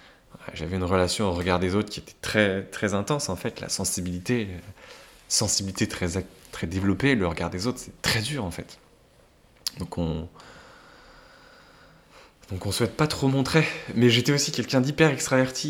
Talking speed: 170 wpm